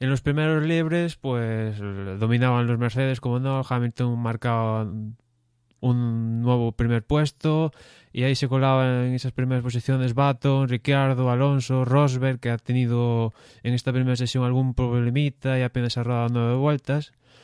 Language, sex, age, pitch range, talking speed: Spanish, male, 20-39, 115-130 Hz, 150 wpm